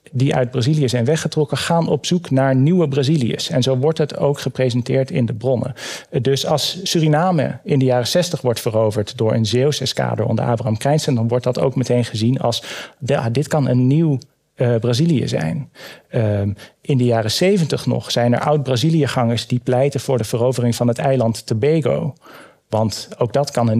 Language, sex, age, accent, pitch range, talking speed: Dutch, male, 40-59, Dutch, 115-150 Hz, 185 wpm